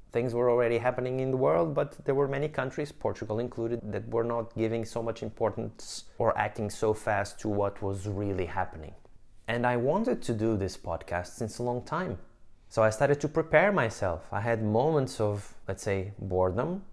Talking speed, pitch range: 190 wpm, 100-120 Hz